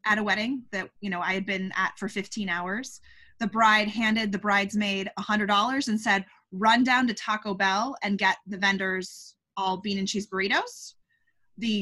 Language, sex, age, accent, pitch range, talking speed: English, female, 20-39, American, 190-230 Hz, 195 wpm